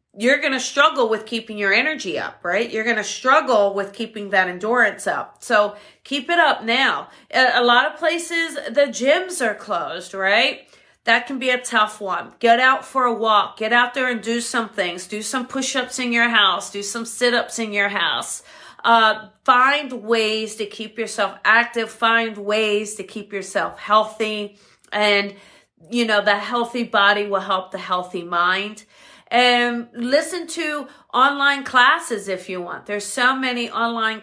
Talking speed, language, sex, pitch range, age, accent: 175 wpm, English, female, 205-255 Hz, 40-59, American